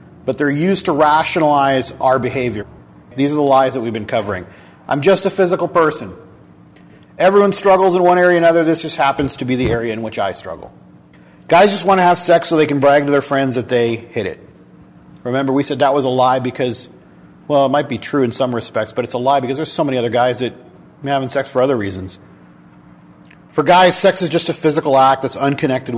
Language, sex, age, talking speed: English, male, 40-59, 225 wpm